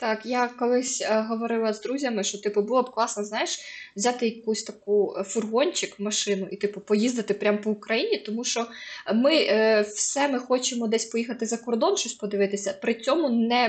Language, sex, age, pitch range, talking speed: Ukrainian, female, 20-39, 200-245 Hz, 175 wpm